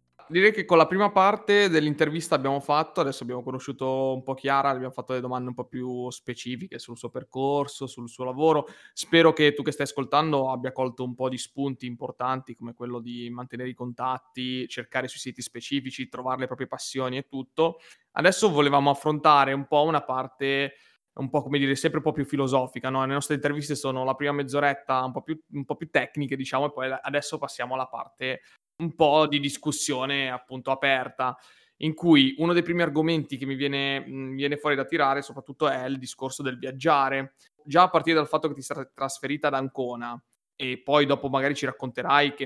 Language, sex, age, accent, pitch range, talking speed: Italian, male, 20-39, native, 130-150 Hz, 190 wpm